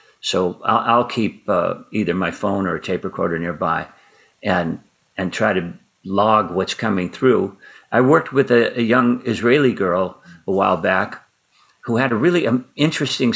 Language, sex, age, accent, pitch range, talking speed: English, male, 50-69, American, 105-140 Hz, 170 wpm